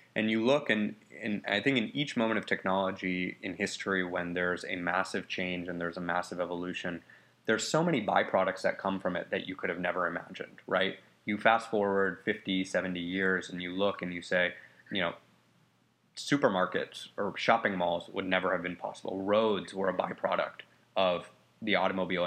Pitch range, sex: 90-105 Hz, male